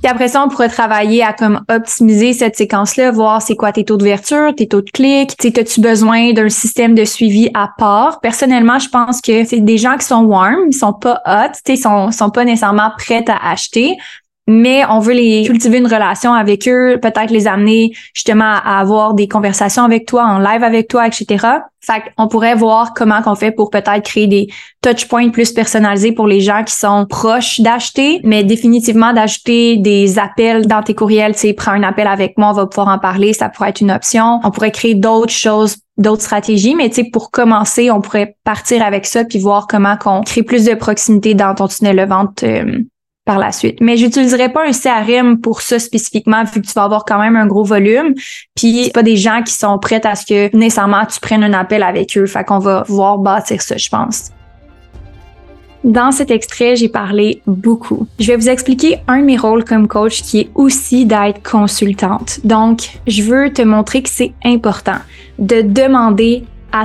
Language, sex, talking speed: French, female, 205 wpm